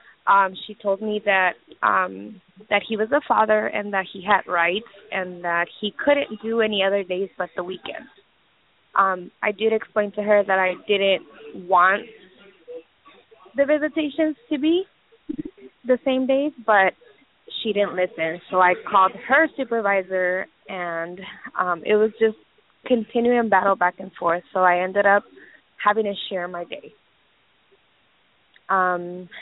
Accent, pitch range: American, 190-225 Hz